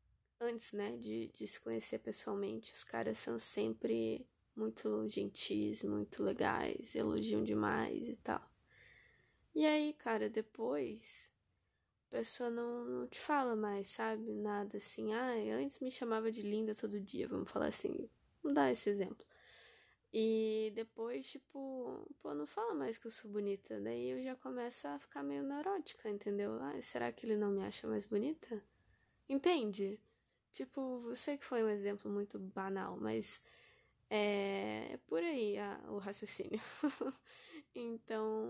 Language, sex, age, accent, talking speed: Portuguese, female, 10-29, Brazilian, 145 wpm